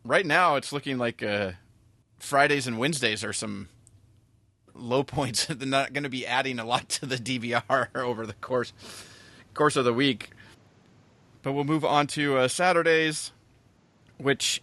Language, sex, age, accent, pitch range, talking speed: English, male, 30-49, American, 105-130 Hz, 160 wpm